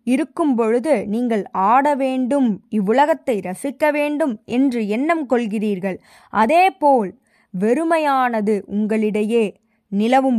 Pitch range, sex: 215-305 Hz, female